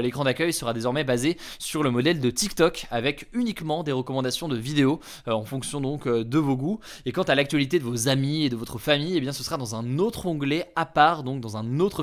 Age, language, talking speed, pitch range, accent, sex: 20-39, French, 240 wpm, 125-155 Hz, French, male